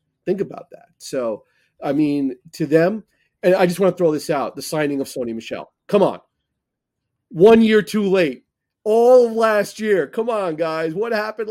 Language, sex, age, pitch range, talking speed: English, male, 30-49, 120-160 Hz, 190 wpm